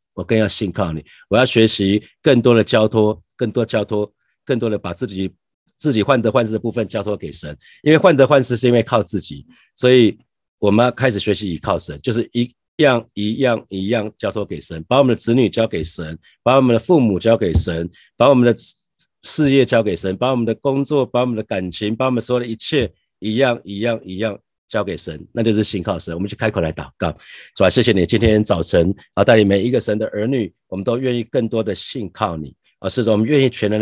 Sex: male